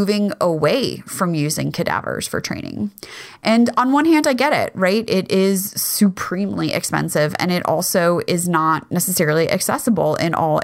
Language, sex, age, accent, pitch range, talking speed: English, female, 30-49, American, 155-200 Hz, 160 wpm